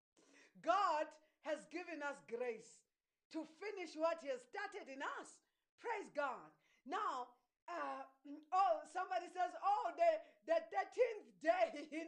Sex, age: female, 40-59